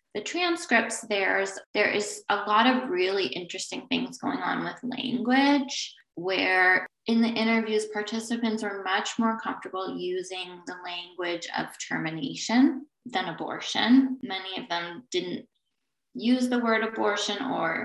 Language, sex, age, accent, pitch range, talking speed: English, female, 20-39, American, 180-235 Hz, 140 wpm